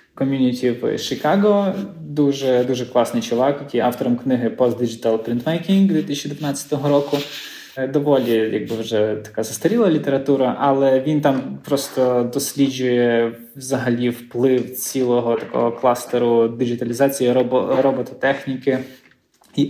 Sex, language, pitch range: male, Ukrainian, 120-140 Hz